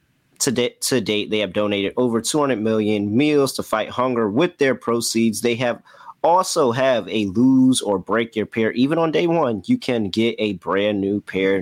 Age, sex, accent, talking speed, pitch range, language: 30-49, male, American, 195 wpm, 100-125 Hz, English